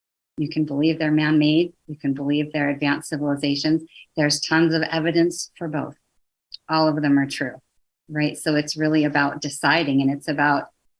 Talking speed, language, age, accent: 170 wpm, English, 30-49, American